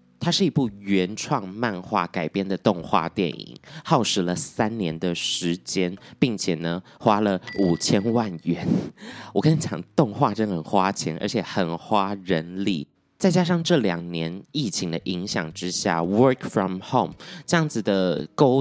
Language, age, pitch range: Chinese, 20-39, 90-125 Hz